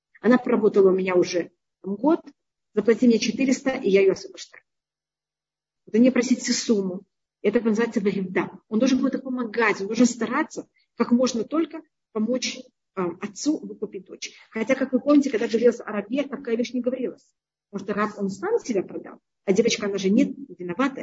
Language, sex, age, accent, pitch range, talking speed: Russian, female, 40-59, native, 195-250 Hz, 165 wpm